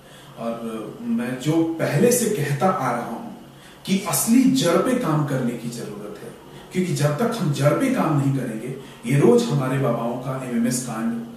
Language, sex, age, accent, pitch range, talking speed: Hindi, male, 40-59, native, 125-190 Hz, 180 wpm